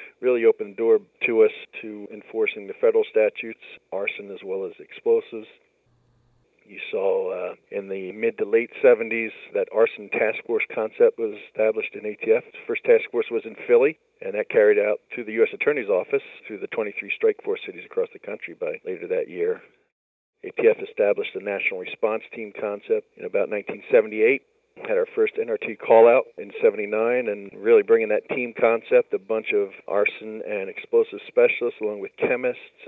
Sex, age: male, 50-69